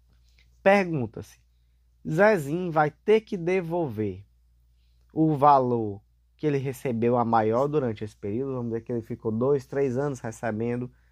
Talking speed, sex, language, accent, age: 135 wpm, male, Portuguese, Brazilian, 20-39